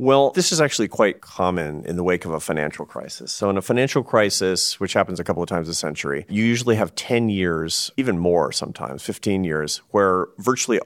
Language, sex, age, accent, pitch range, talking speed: English, male, 40-59, American, 90-110 Hz, 210 wpm